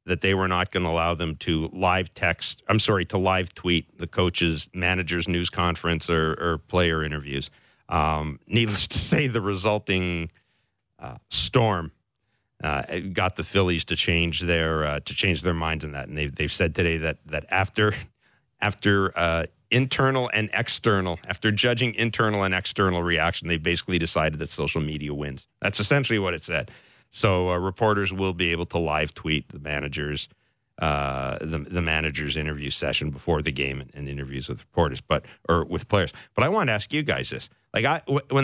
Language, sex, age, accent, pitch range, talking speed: English, male, 40-59, American, 80-105 Hz, 185 wpm